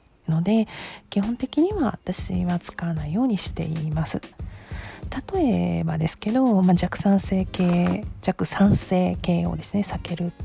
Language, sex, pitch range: Japanese, female, 170-220 Hz